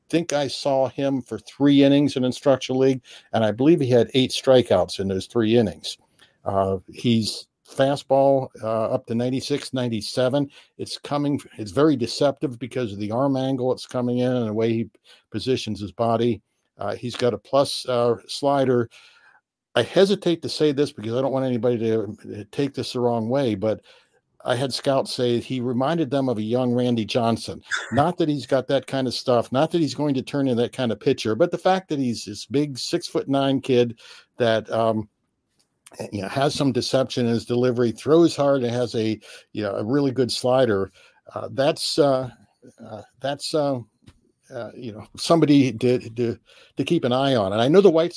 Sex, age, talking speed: male, 60-79, 200 wpm